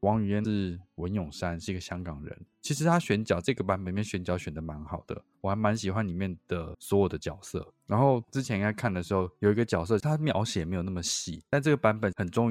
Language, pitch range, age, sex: Chinese, 90-110 Hz, 20-39, male